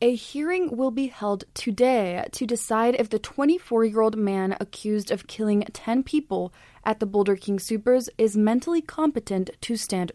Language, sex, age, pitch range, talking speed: English, female, 20-39, 205-250 Hz, 160 wpm